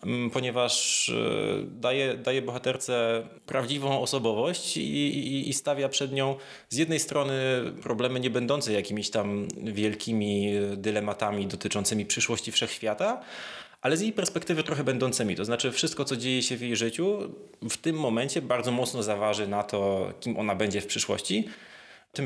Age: 20-39